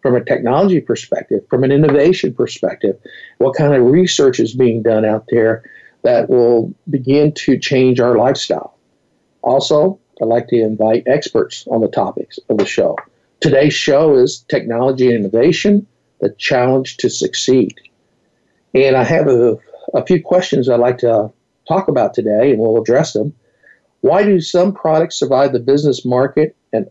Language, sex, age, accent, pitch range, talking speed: English, male, 60-79, American, 120-160 Hz, 160 wpm